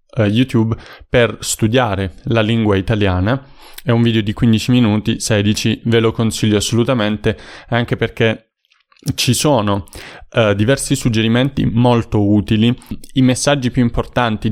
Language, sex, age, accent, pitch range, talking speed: Italian, male, 20-39, native, 105-125 Hz, 120 wpm